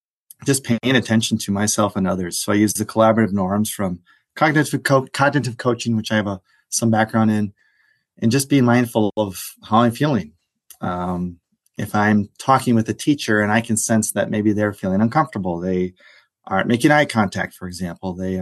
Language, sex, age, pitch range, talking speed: English, male, 30-49, 95-115 Hz, 180 wpm